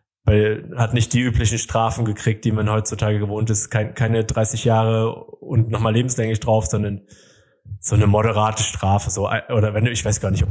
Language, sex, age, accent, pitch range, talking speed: German, male, 20-39, German, 105-120 Hz, 190 wpm